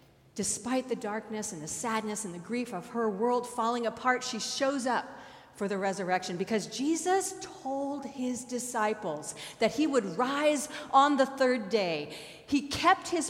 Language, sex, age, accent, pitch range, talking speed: English, female, 40-59, American, 170-245 Hz, 160 wpm